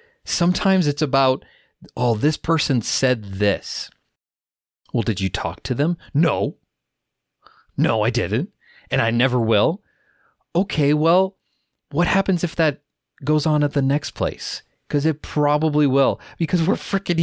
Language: English